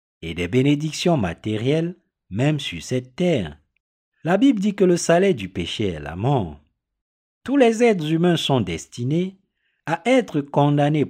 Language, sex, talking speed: French, male, 150 wpm